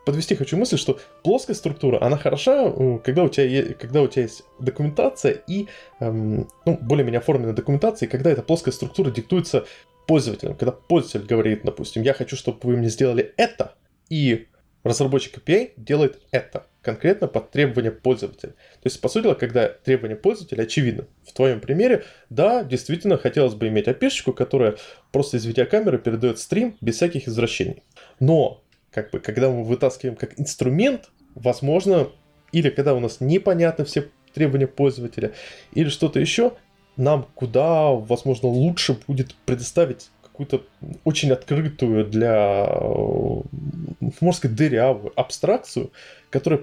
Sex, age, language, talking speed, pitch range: male, 20-39, Russian, 145 wpm, 120-155 Hz